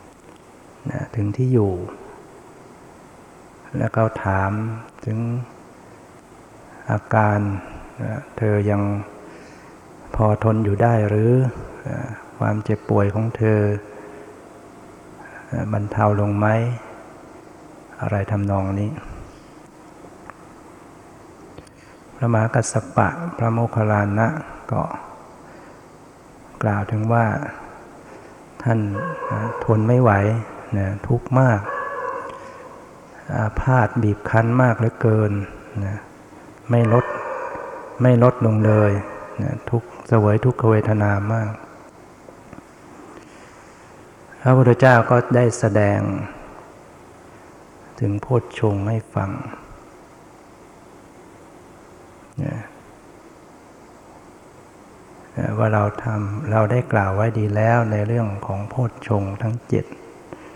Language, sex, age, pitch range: English, male, 60-79, 105-120 Hz